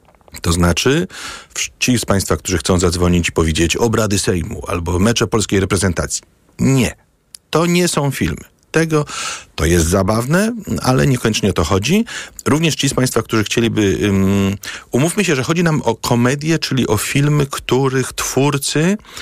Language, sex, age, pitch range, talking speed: Polish, male, 40-59, 85-120 Hz, 150 wpm